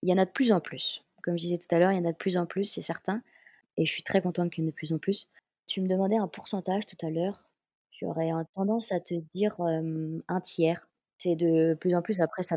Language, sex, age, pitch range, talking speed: French, female, 20-39, 165-190 Hz, 290 wpm